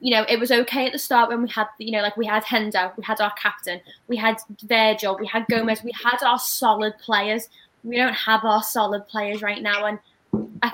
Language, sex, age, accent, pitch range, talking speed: English, female, 10-29, British, 210-250 Hz, 235 wpm